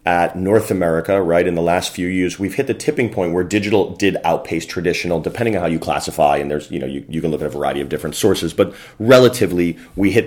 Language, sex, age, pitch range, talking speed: English, male, 30-49, 85-105 Hz, 245 wpm